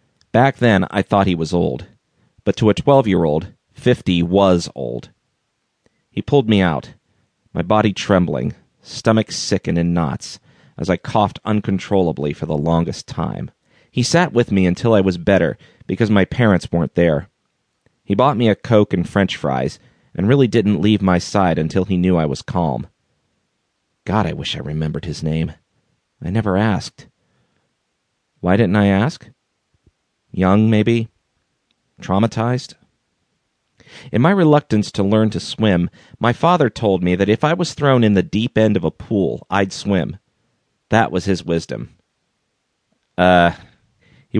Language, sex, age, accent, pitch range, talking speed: English, male, 40-59, American, 90-115 Hz, 155 wpm